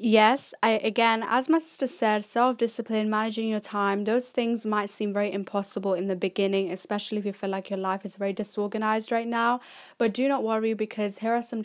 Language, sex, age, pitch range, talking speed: English, female, 10-29, 200-230 Hz, 205 wpm